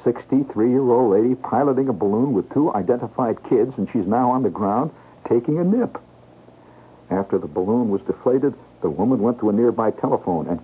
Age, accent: 60-79, American